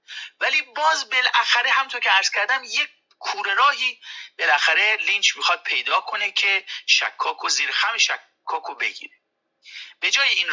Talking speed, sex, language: 135 wpm, male, Persian